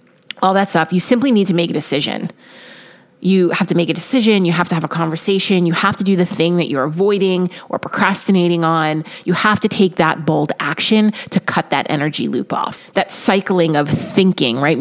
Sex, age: female, 30-49